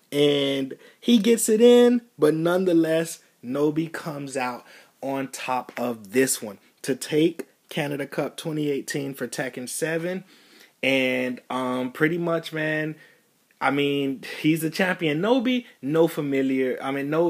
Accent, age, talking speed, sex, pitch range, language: American, 30-49, 135 wpm, male, 125-155 Hz, English